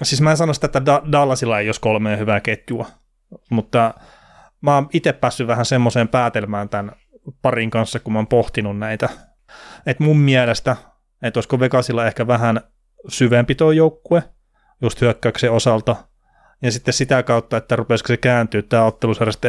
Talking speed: 155 wpm